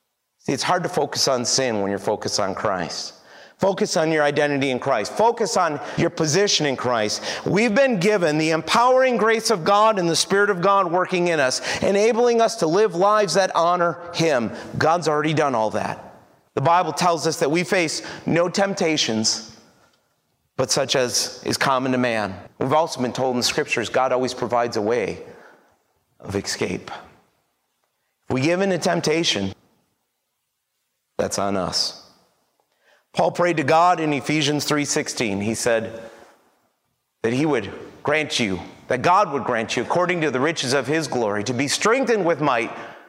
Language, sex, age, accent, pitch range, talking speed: English, male, 30-49, American, 120-175 Hz, 170 wpm